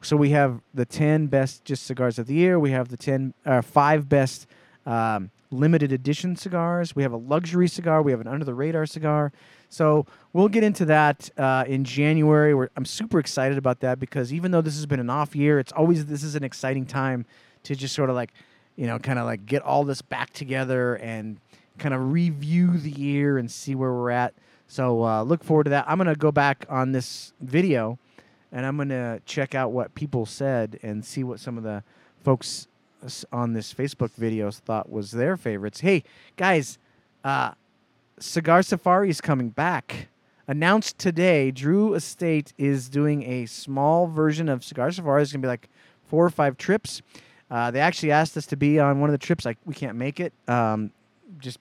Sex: male